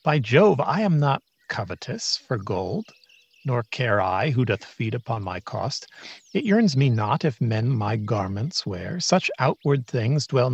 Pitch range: 110-145 Hz